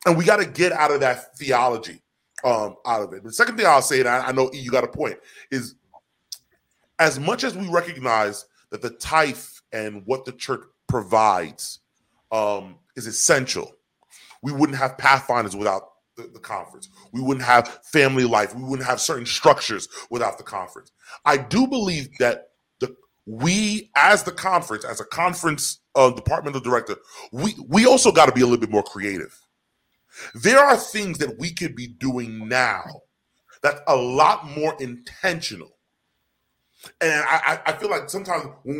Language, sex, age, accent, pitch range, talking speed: English, female, 30-49, American, 125-180 Hz, 175 wpm